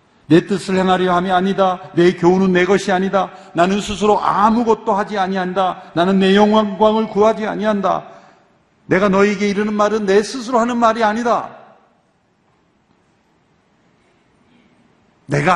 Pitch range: 145-215 Hz